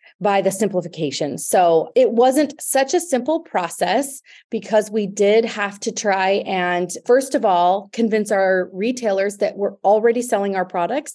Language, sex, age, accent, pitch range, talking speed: English, female, 30-49, American, 185-240 Hz, 155 wpm